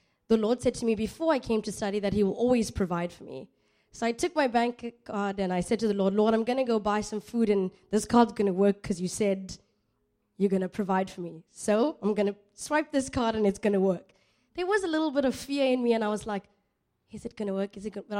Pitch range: 195-240 Hz